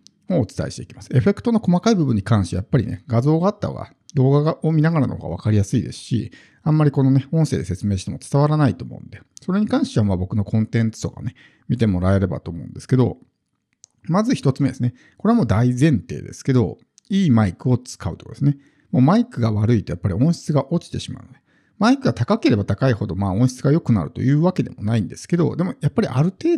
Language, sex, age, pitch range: Japanese, male, 50-69, 110-155 Hz